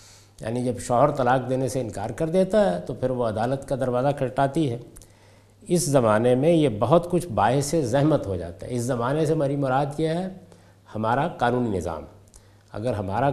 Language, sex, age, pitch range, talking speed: Urdu, male, 50-69, 105-160 Hz, 185 wpm